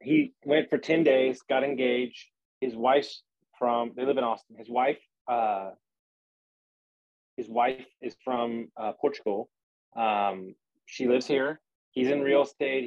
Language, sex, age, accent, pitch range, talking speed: English, male, 30-49, American, 115-145 Hz, 145 wpm